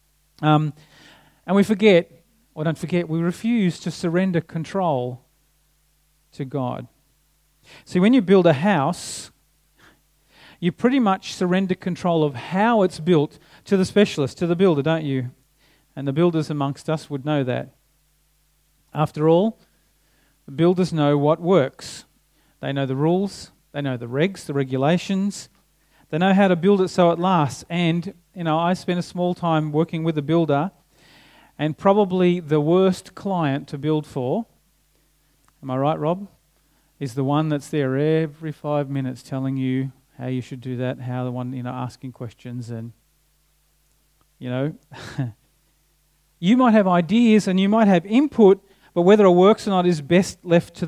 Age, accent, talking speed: 40-59, Australian, 165 wpm